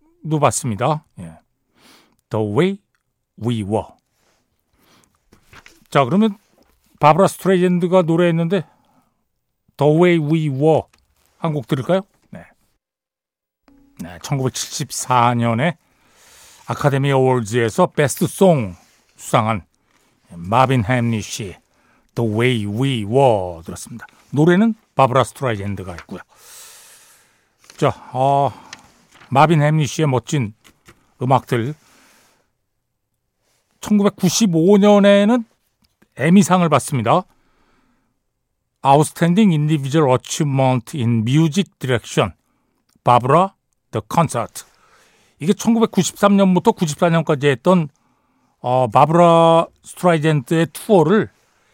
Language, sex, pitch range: Korean, male, 120-180 Hz